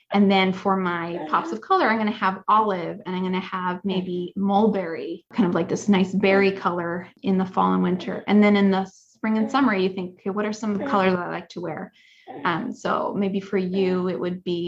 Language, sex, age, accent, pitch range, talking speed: English, female, 20-39, American, 185-225 Hz, 235 wpm